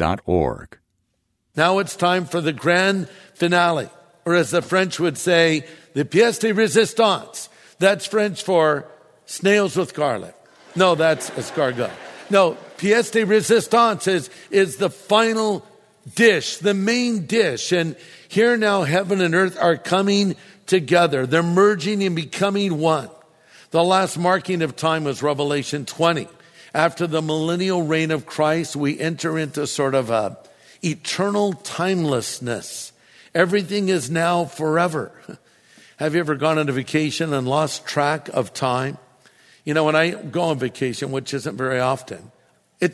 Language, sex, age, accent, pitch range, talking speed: English, male, 60-79, American, 155-195 Hz, 145 wpm